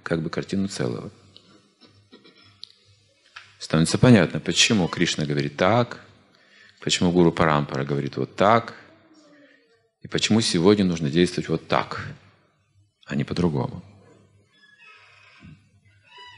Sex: male